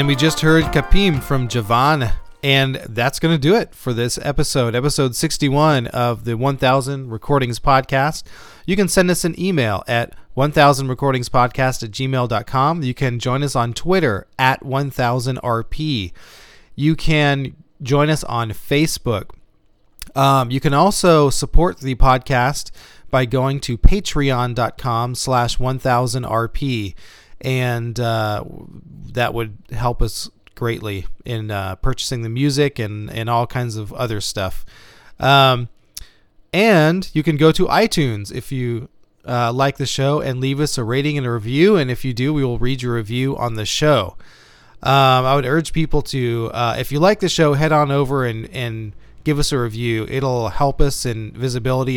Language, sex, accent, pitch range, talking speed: English, male, American, 120-145 Hz, 160 wpm